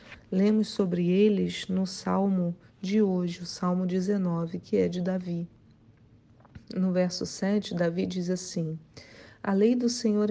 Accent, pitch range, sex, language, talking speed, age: Brazilian, 180-210 Hz, female, Portuguese, 140 wpm, 40-59